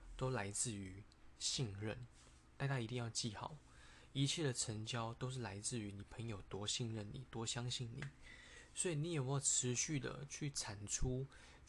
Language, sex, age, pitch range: Chinese, male, 20-39, 100-130 Hz